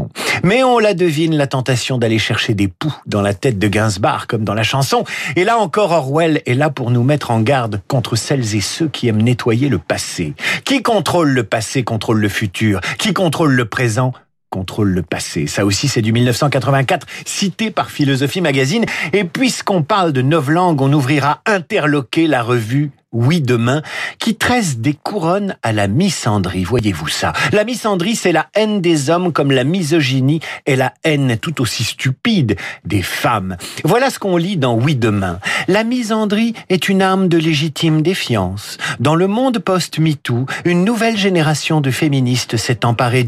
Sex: male